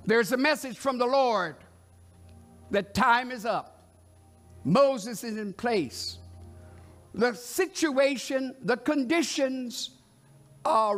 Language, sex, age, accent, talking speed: English, male, 60-79, American, 105 wpm